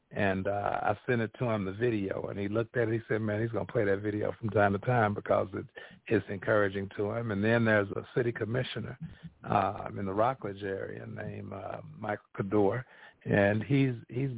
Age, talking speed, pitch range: 50-69, 215 wpm, 105-125 Hz